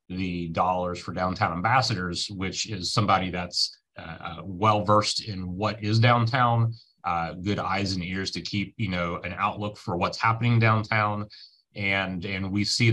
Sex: male